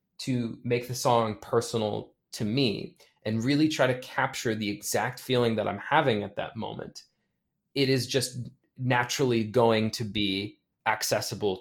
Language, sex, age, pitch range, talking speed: English, male, 20-39, 105-125 Hz, 150 wpm